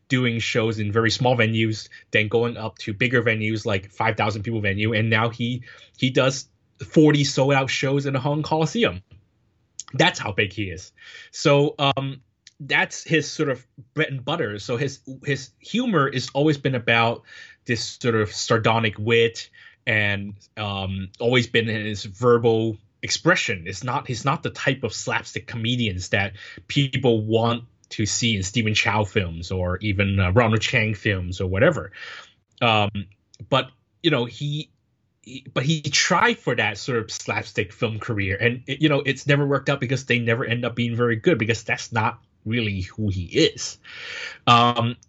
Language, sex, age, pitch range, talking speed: English, male, 20-39, 105-135 Hz, 170 wpm